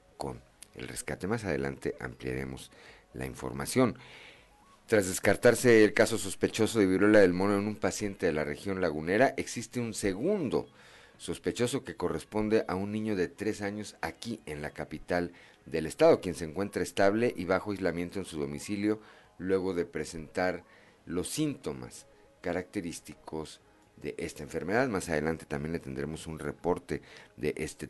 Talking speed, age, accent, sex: 150 wpm, 50-69, Mexican, male